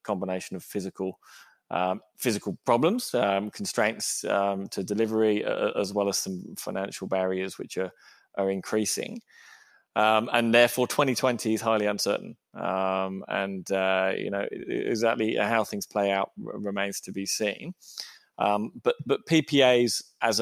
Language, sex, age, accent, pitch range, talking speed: English, male, 20-39, British, 95-115 Hz, 145 wpm